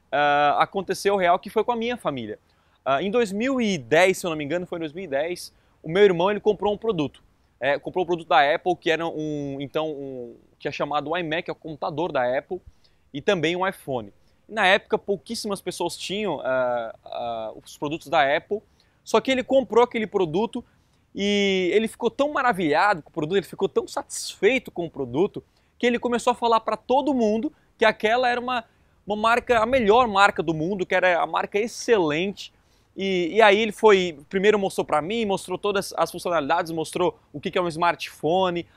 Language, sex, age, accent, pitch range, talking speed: Portuguese, male, 20-39, Brazilian, 165-215 Hz, 195 wpm